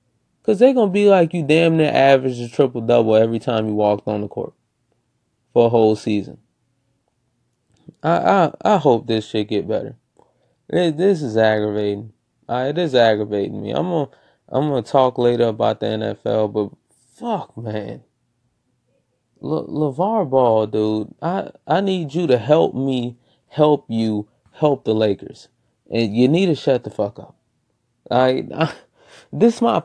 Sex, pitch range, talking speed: male, 115-180 Hz, 165 wpm